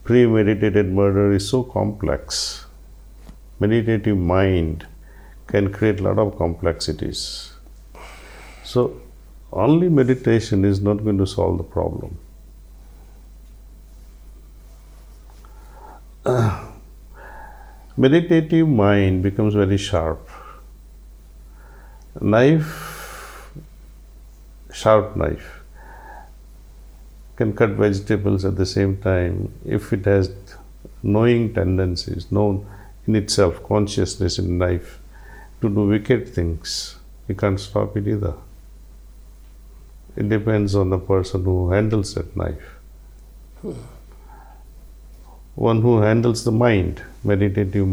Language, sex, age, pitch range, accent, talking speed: Hindi, male, 50-69, 85-110 Hz, native, 90 wpm